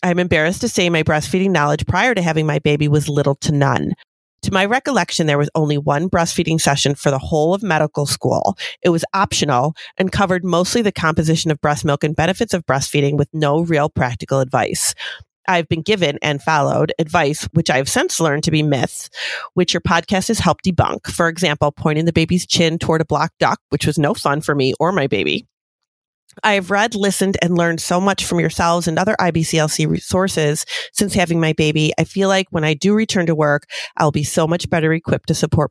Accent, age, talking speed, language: American, 30-49, 210 wpm, English